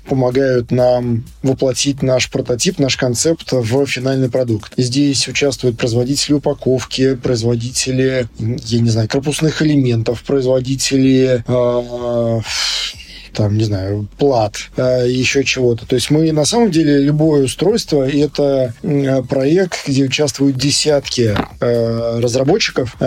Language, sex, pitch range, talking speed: Russian, male, 125-145 Hz, 115 wpm